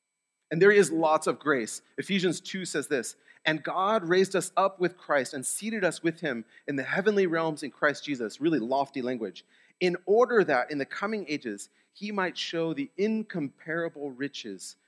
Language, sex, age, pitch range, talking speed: English, male, 30-49, 140-195 Hz, 180 wpm